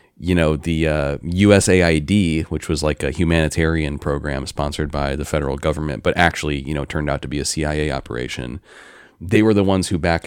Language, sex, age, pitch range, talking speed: English, male, 30-49, 75-95 Hz, 195 wpm